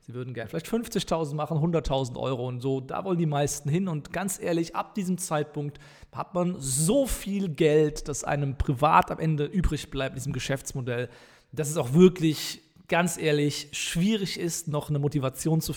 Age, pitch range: 40-59, 130-160 Hz